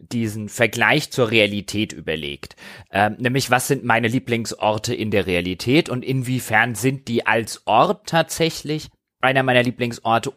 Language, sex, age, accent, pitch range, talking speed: German, male, 30-49, German, 110-140 Hz, 140 wpm